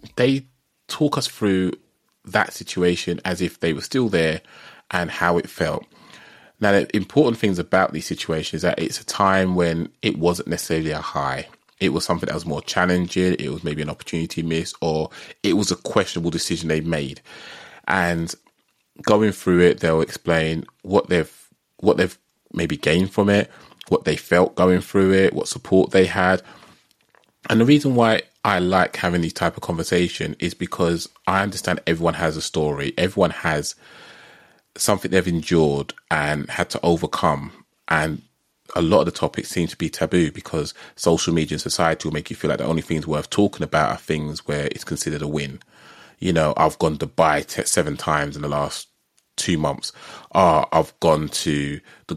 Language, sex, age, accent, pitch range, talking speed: English, male, 20-39, British, 80-95 Hz, 185 wpm